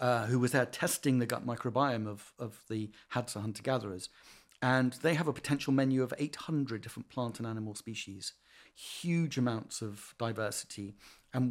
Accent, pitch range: British, 110-140 Hz